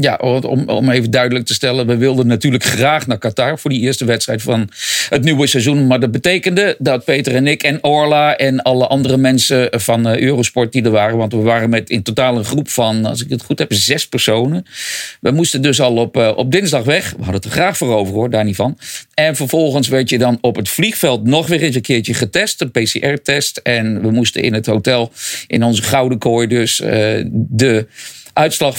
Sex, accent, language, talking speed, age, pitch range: male, Dutch, English, 215 wpm, 50-69, 115-150 Hz